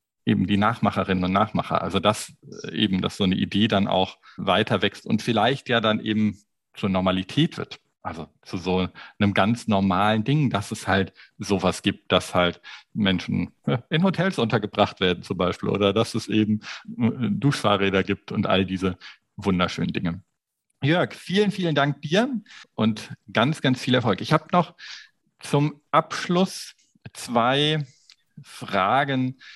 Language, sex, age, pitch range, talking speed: German, male, 50-69, 100-135 Hz, 150 wpm